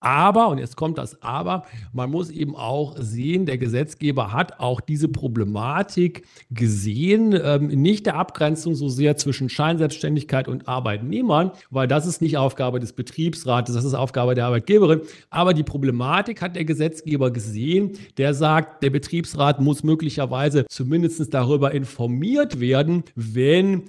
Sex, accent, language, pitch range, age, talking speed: male, German, German, 125-160 Hz, 50-69, 145 wpm